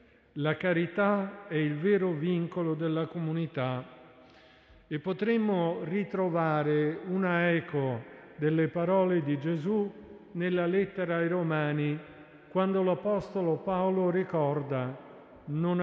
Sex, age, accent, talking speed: male, 50-69, native, 100 wpm